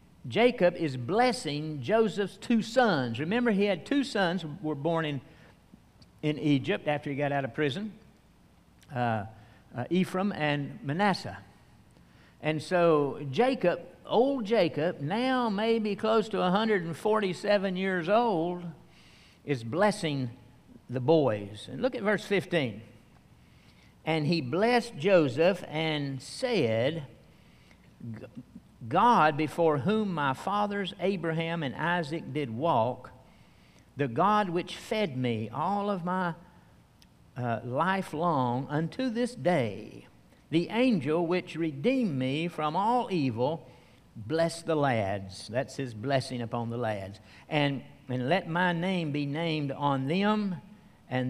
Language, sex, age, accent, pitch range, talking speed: English, male, 60-79, American, 130-190 Hz, 125 wpm